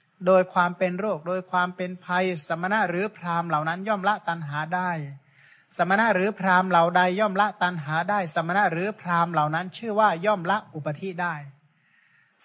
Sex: male